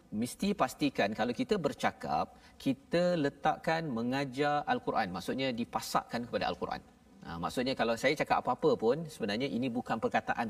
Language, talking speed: Malayalam, 135 wpm